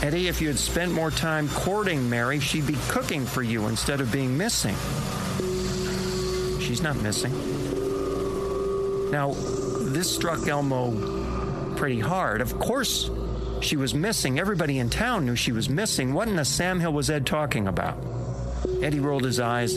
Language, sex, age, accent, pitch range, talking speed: English, male, 50-69, American, 120-185 Hz, 160 wpm